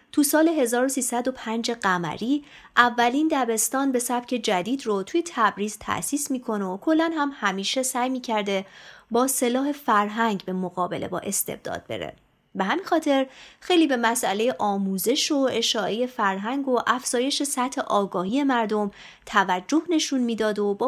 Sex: female